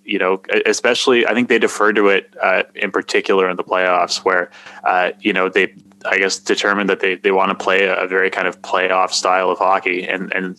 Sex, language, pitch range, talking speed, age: male, English, 95-105 Hz, 220 wpm, 20-39